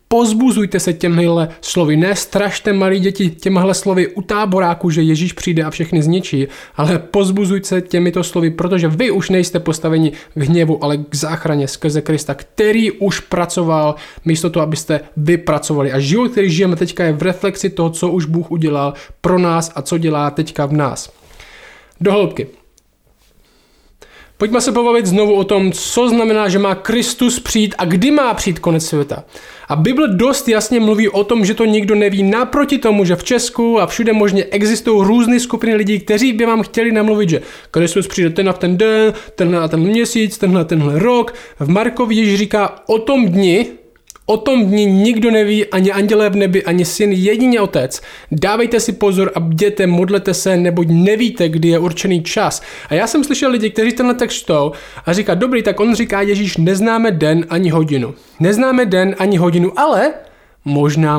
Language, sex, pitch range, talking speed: Czech, male, 170-215 Hz, 180 wpm